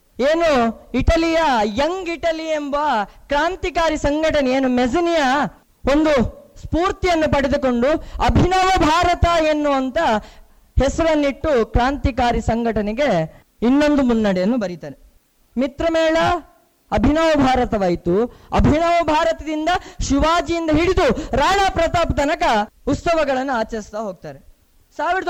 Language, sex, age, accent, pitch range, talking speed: Kannada, female, 20-39, native, 235-315 Hz, 85 wpm